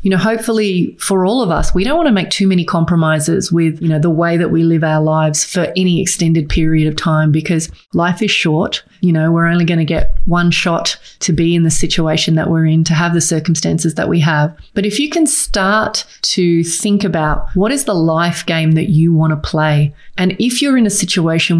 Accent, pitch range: Australian, 165-195 Hz